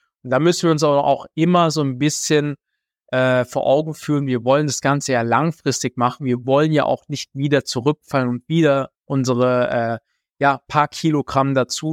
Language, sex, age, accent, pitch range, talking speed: German, male, 20-39, German, 125-150 Hz, 180 wpm